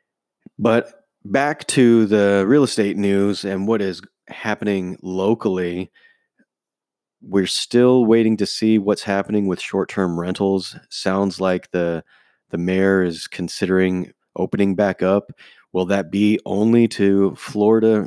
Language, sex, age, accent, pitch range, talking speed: English, male, 30-49, American, 95-110 Hz, 125 wpm